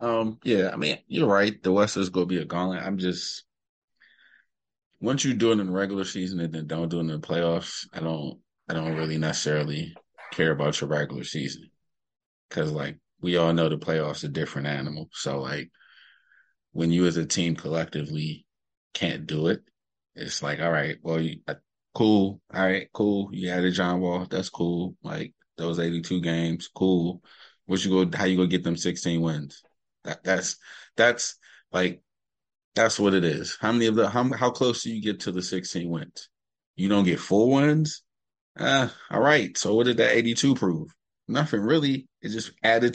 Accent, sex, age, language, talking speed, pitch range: American, male, 20-39, English, 195 wpm, 85-110 Hz